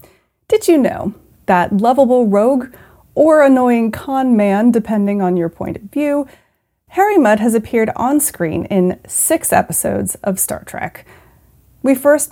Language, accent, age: English, American, 30-49